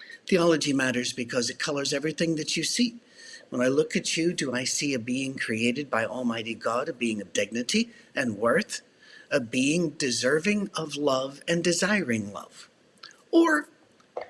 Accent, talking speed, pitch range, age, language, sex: American, 160 wpm, 130-190 Hz, 60-79, English, male